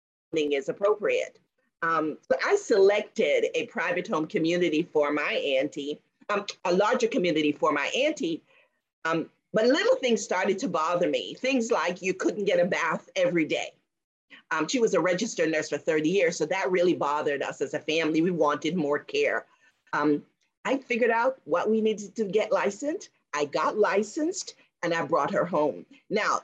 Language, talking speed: English, 175 wpm